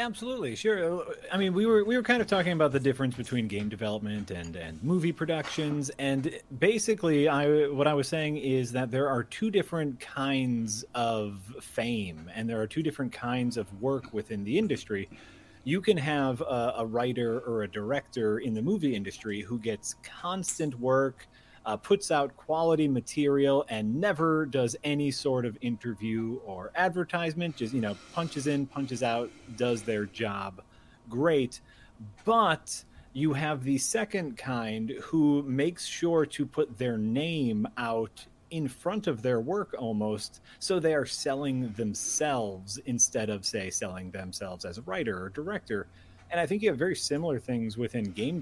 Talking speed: 165 wpm